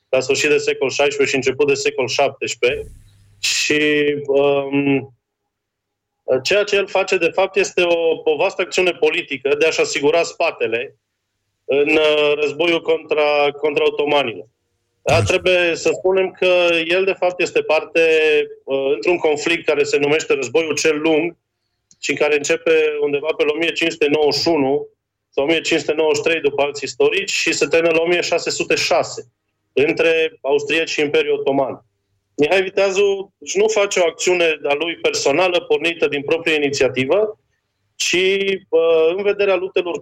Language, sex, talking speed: Romanian, male, 140 wpm